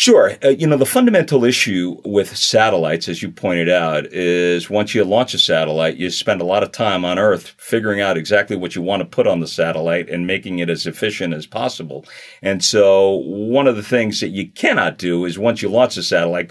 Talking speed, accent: 220 wpm, American